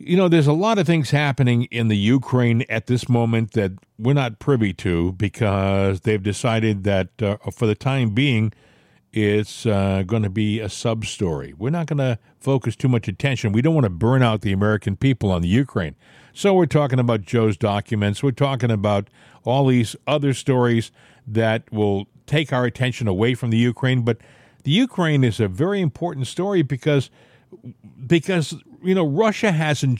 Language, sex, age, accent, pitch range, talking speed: English, male, 50-69, American, 115-150 Hz, 180 wpm